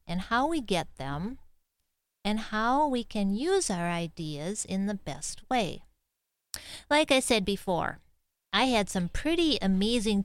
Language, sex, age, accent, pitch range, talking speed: English, female, 40-59, American, 170-245 Hz, 145 wpm